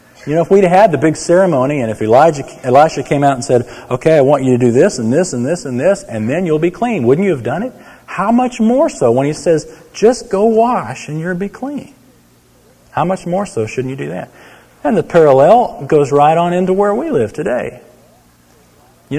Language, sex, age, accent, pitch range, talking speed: English, male, 40-59, American, 125-195 Hz, 230 wpm